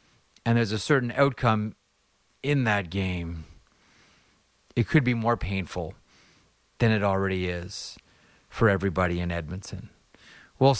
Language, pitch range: English, 95-120 Hz